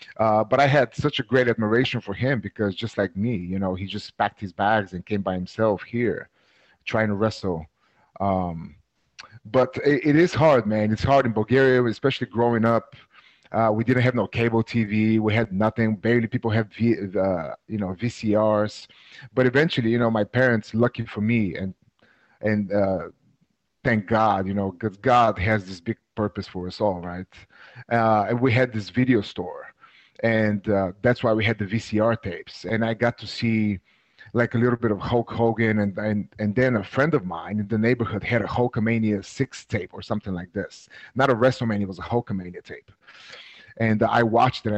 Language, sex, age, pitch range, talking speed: Hebrew, male, 30-49, 100-120 Hz, 200 wpm